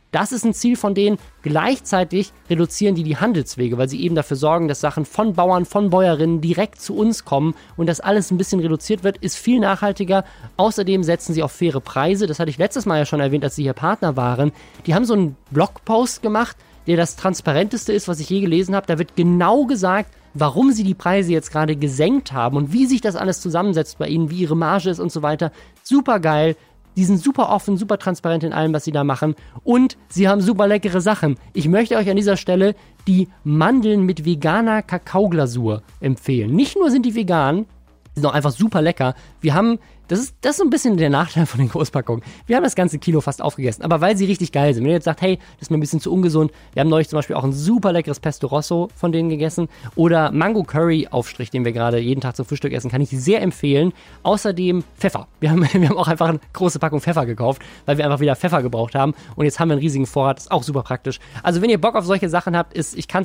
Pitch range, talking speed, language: 145-195 Hz, 240 wpm, German